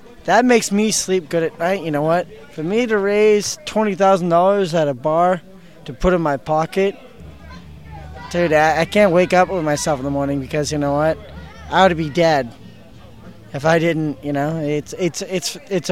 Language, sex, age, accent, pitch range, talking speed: English, male, 20-39, American, 150-190 Hz, 200 wpm